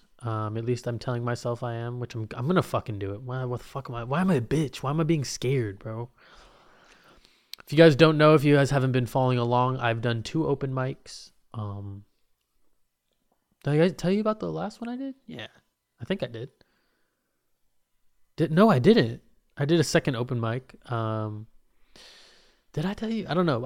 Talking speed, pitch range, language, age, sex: 215 wpm, 115-145 Hz, English, 20-39, male